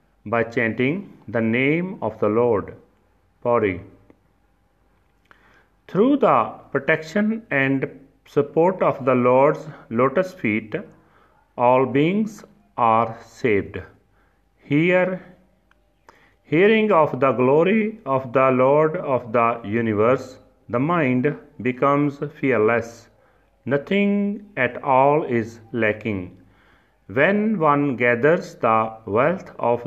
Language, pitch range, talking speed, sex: Punjabi, 110-145 Hz, 95 wpm, male